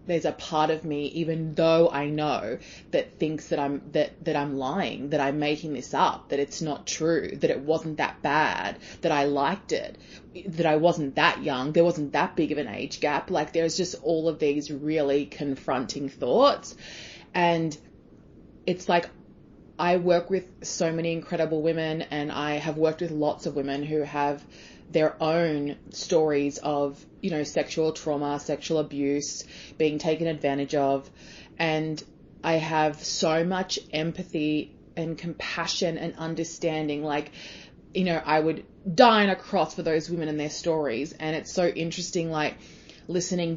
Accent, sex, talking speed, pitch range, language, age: Australian, female, 165 wpm, 150-170 Hz, English, 20-39